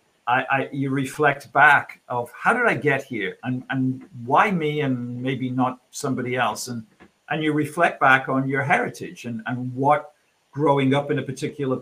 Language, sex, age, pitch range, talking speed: English, male, 50-69, 125-145 Hz, 185 wpm